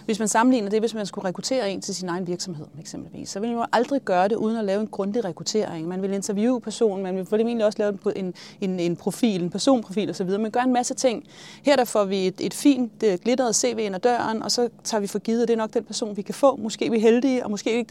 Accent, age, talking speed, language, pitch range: native, 30-49, 275 wpm, Danish, 205-240 Hz